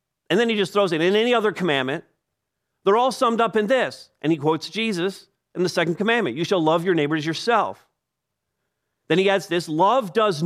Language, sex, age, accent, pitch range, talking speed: English, male, 50-69, American, 190-250 Hz, 210 wpm